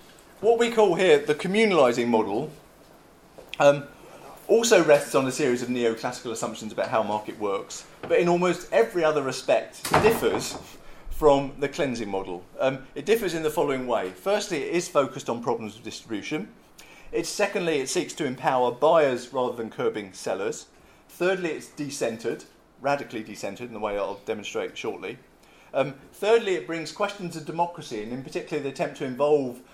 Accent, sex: British, male